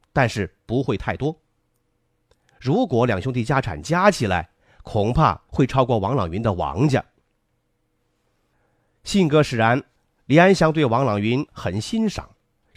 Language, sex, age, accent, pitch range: Chinese, male, 30-49, native, 110-160 Hz